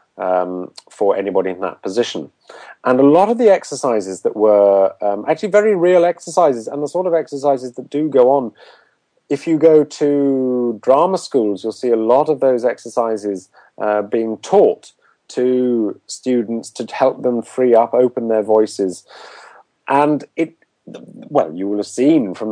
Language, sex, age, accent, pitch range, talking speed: English, male, 40-59, British, 110-140 Hz, 165 wpm